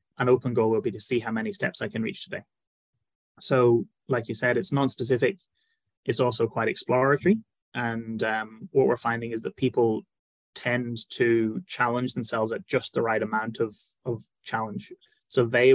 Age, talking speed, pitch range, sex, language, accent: 20-39, 175 wpm, 115-140 Hz, male, English, British